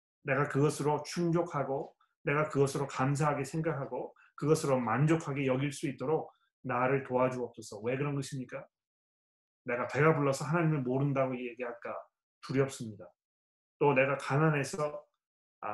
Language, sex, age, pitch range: Korean, male, 30-49, 125-165 Hz